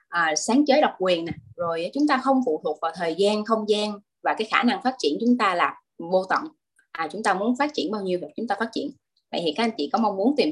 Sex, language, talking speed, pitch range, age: female, Vietnamese, 285 wpm, 185-265 Hz, 20-39